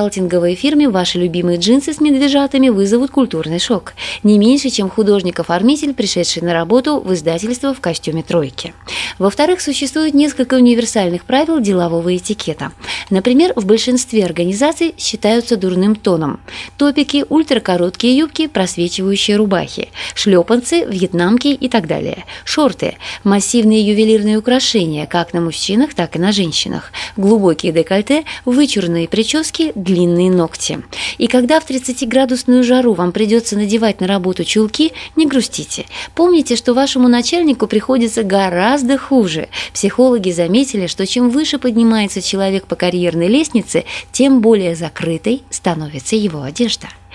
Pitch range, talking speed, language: 180-255 Hz, 125 wpm, Russian